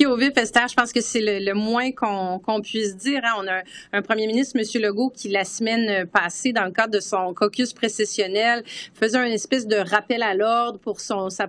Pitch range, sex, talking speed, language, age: 200-245 Hz, female, 225 wpm, French, 30-49